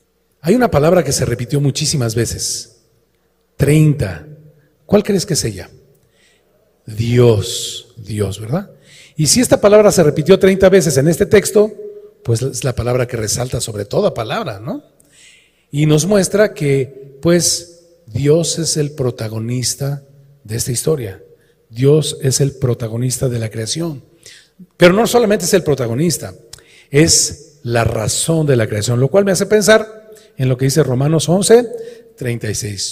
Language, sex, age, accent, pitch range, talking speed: Spanish, male, 40-59, Mexican, 130-190 Hz, 150 wpm